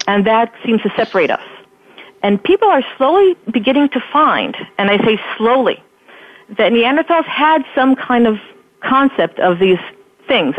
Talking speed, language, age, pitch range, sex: 155 wpm, English, 40-59, 195-240 Hz, female